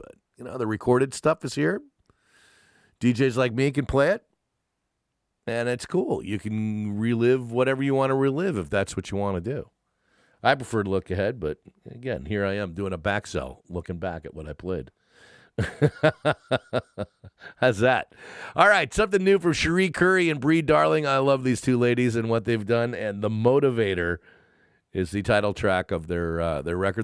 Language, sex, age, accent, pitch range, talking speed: English, male, 50-69, American, 95-130 Hz, 185 wpm